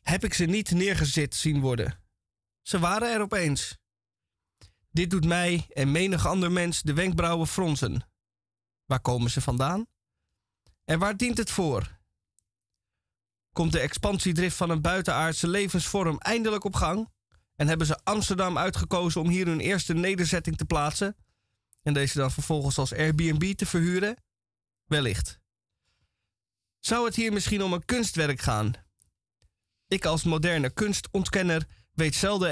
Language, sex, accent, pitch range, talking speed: Dutch, male, Dutch, 115-180 Hz, 140 wpm